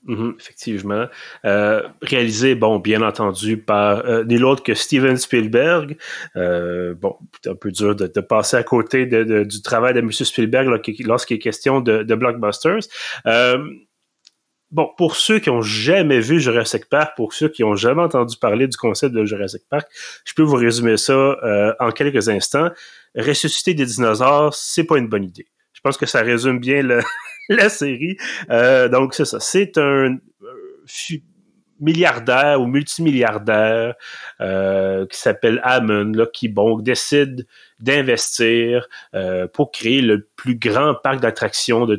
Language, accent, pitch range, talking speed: French, Canadian, 110-145 Hz, 160 wpm